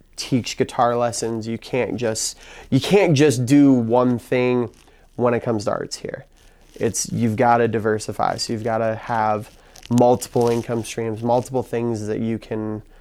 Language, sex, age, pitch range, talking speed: English, male, 20-39, 115-130 Hz, 165 wpm